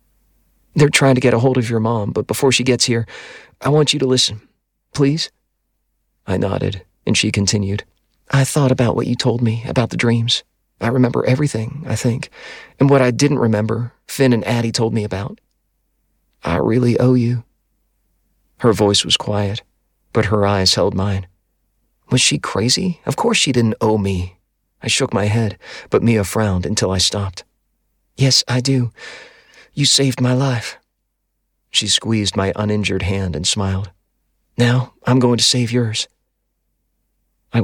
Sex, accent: male, American